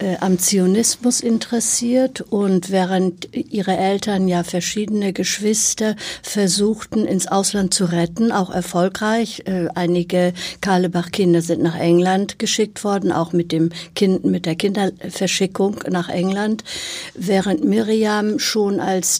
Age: 60-79